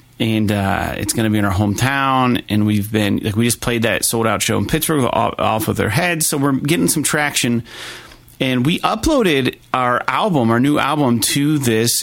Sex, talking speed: male, 205 wpm